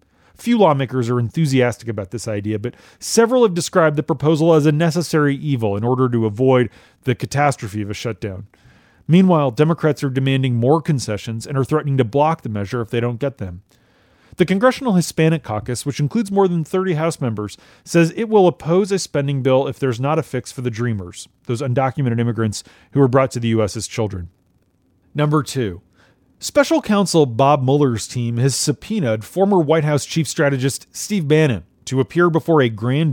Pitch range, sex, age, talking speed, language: 115-155 Hz, male, 30-49, 185 wpm, English